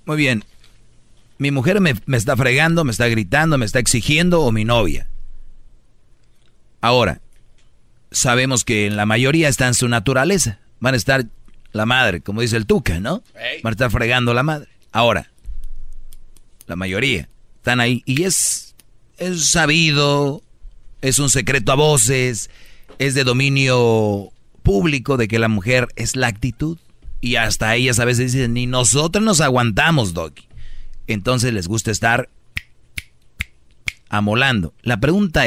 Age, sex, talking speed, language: 40-59, male, 145 wpm, Spanish